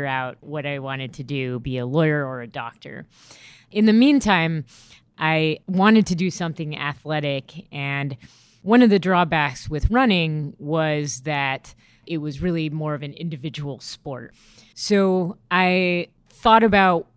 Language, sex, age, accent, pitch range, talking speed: English, female, 20-39, American, 145-180 Hz, 145 wpm